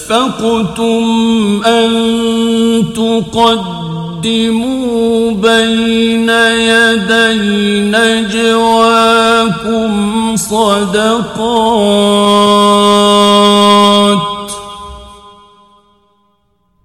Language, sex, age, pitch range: Persian, male, 50-69, 205-230 Hz